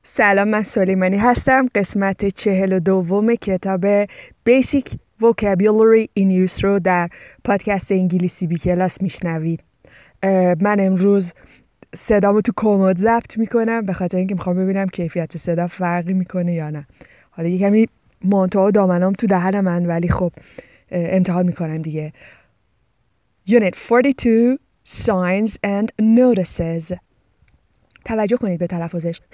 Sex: female